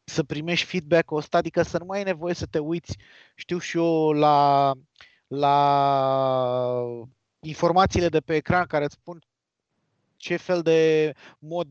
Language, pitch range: Romanian, 140-175 Hz